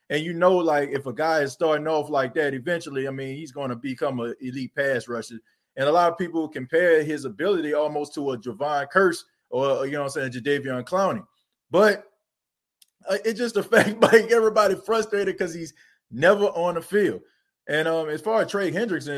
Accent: American